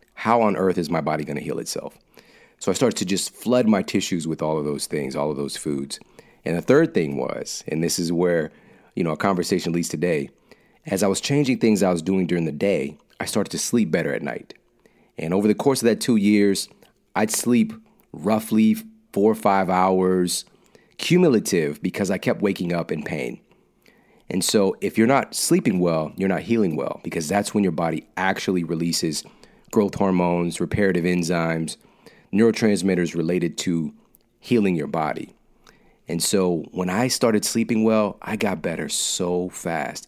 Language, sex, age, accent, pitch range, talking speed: Danish, male, 40-59, American, 85-105 Hz, 185 wpm